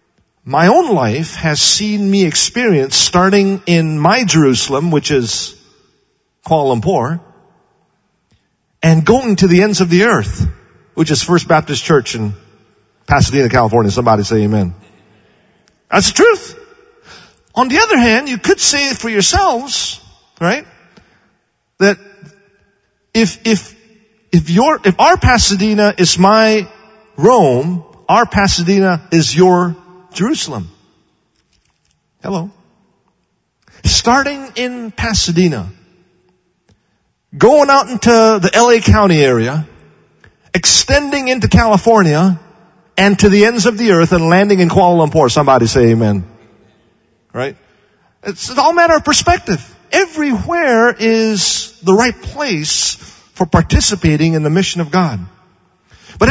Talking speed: 120 wpm